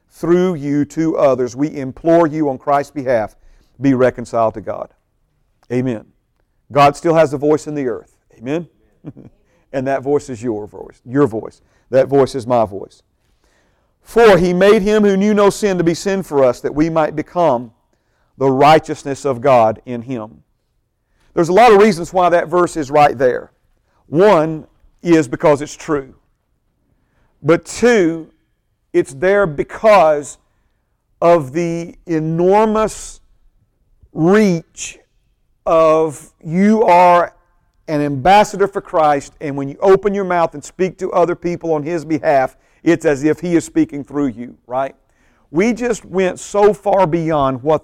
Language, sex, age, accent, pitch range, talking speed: English, male, 50-69, American, 135-175 Hz, 155 wpm